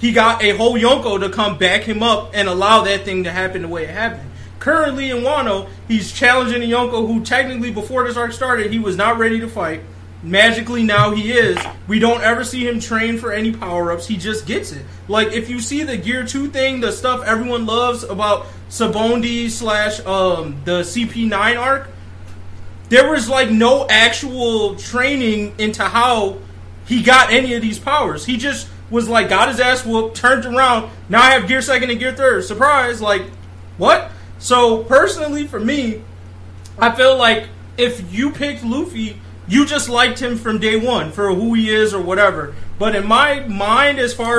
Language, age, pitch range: English, 20-39, 200-245 Hz